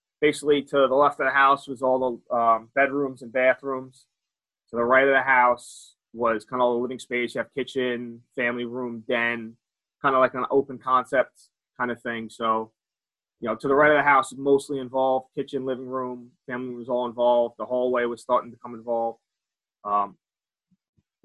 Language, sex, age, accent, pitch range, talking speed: English, male, 20-39, American, 120-135 Hz, 195 wpm